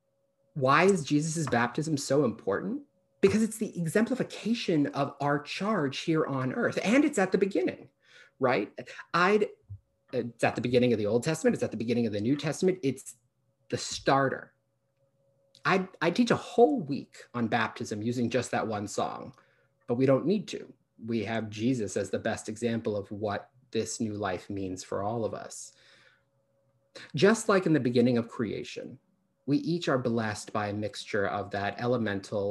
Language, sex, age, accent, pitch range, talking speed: English, male, 30-49, American, 110-145 Hz, 170 wpm